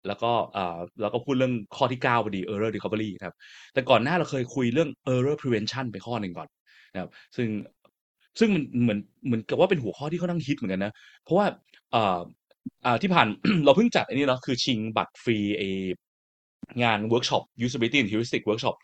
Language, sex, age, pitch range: Thai, male, 20-39, 110-150 Hz